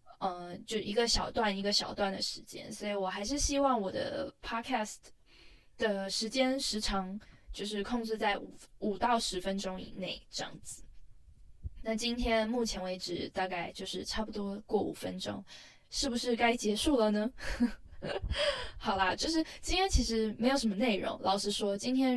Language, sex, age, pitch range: Chinese, female, 10-29, 195-235 Hz